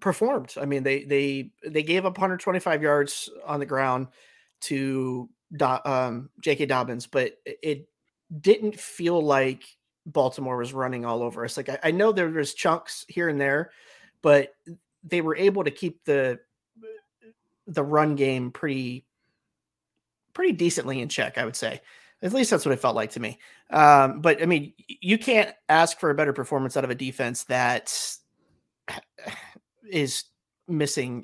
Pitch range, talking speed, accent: 130-155 Hz, 160 wpm, American